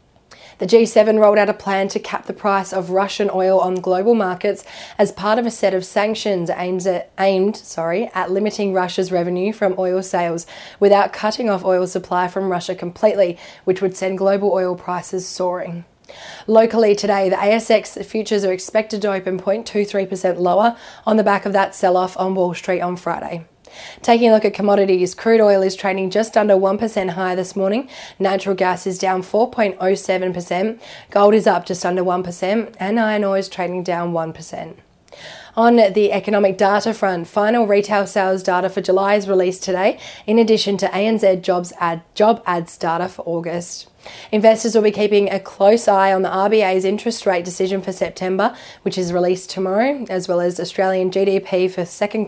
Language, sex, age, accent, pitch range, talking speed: English, female, 20-39, Australian, 185-210 Hz, 170 wpm